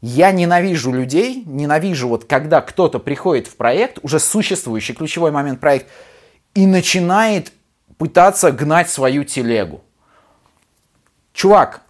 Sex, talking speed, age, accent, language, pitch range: male, 110 wpm, 30-49, native, Russian, 145-210 Hz